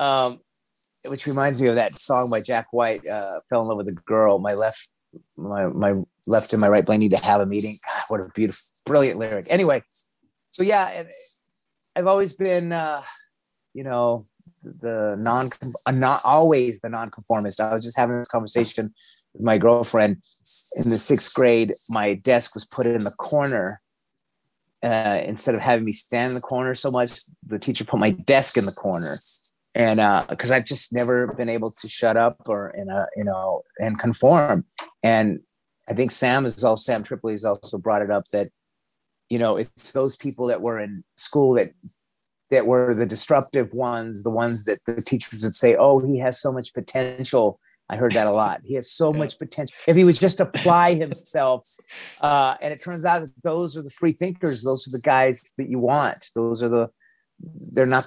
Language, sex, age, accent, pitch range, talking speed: English, male, 30-49, American, 110-135 Hz, 200 wpm